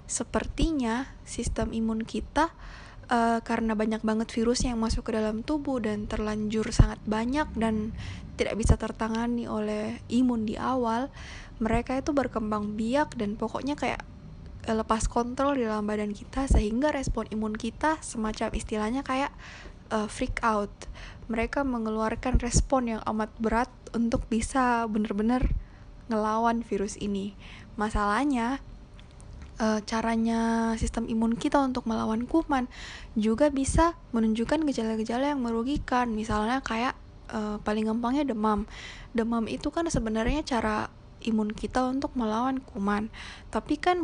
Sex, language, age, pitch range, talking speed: female, Indonesian, 20-39, 220-255 Hz, 125 wpm